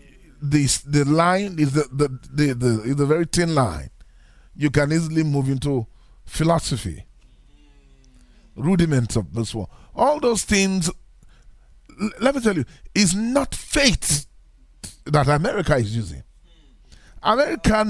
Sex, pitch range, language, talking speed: male, 125-185 Hz, English, 135 wpm